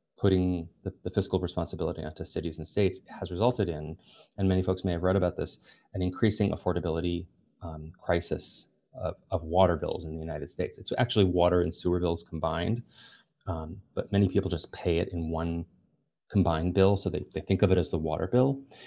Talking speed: 195 wpm